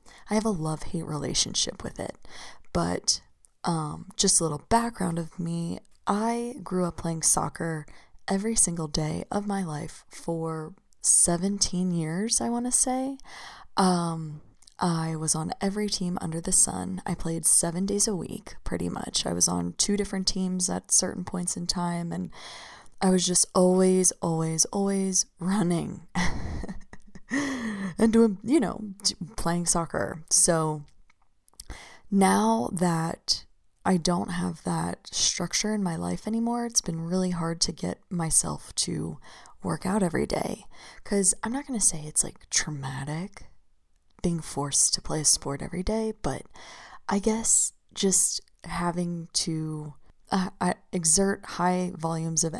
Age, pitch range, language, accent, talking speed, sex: 20-39, 165-200 Hz, English, American, 145 wpm, female